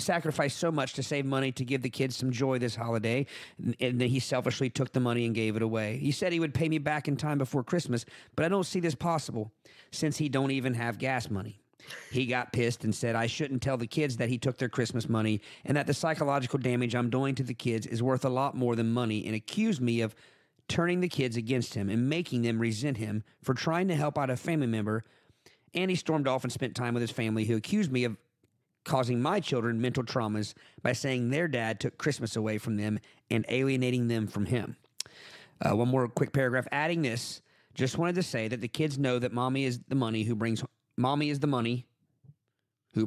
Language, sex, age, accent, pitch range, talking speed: English, male, 40-59, American, 120-140 Hz, 230 wpm